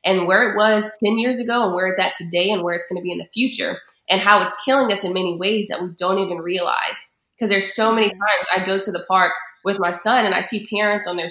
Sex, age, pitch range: female, 20-39, 175-210 Hz